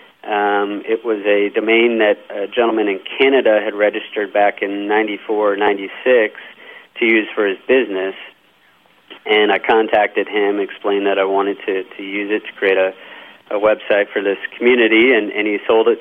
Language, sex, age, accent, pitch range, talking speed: English, male, 40-59, American, 100-115 Hz, 170 wpm